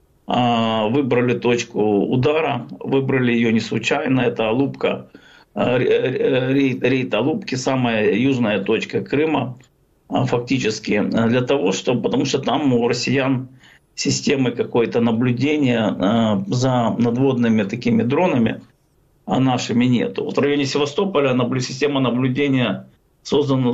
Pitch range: 120-140 Hz